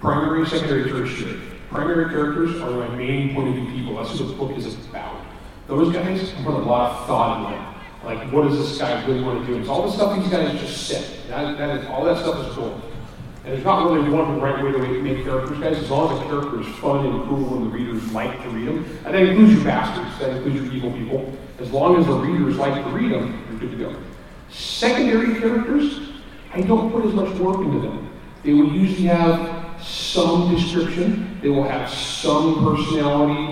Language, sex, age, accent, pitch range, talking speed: English, male, 40-59, American, 130-170 Hz, 225 wpm